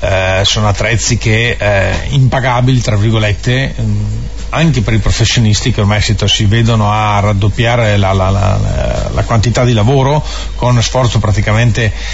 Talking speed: 135 wpm